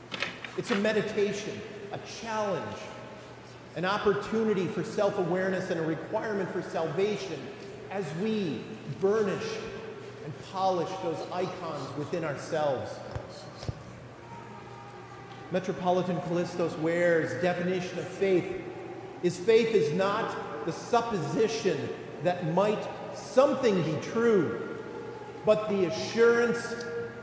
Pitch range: 180-220 Hz